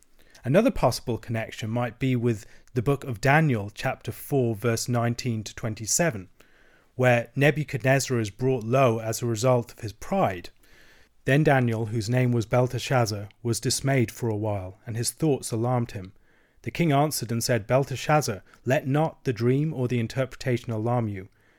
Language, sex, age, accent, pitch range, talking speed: English, male, 30-49, British, 115-135 Hz, 160 wpm